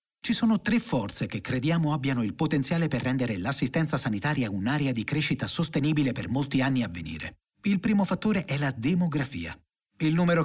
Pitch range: 120-160 Hz